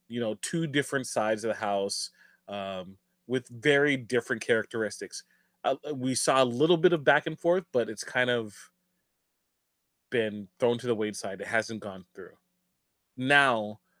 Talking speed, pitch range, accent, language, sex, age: 160 wpm, 115-145 Hz, American, English, male, 20-39